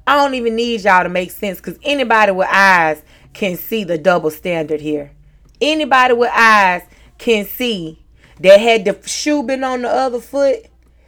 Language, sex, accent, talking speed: English, female, American, 175 wpm